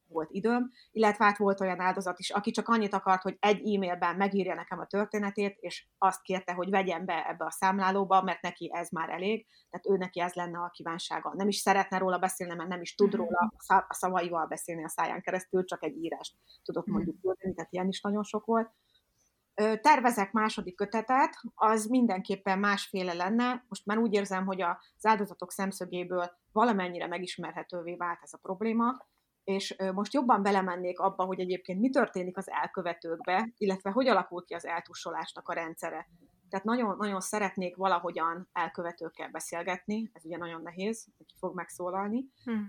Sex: female